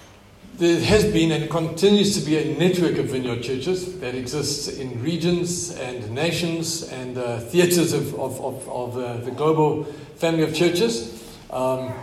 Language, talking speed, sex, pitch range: English, 160 wpm, male, 130-170 Hz